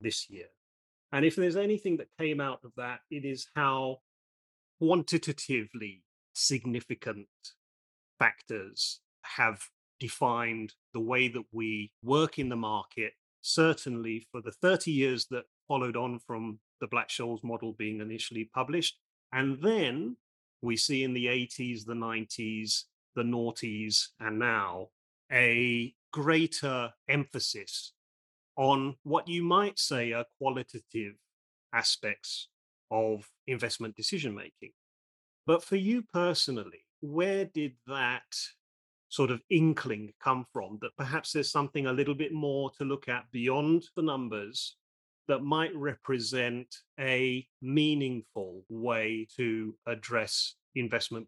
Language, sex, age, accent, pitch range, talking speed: English, male, 30-49, British, 110-145 Hz, 125 wpm